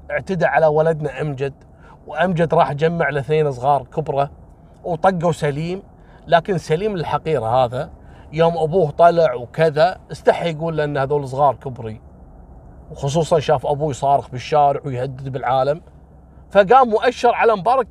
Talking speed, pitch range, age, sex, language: 125 wpm, 125-165 Hz, 30-49, male, Arabic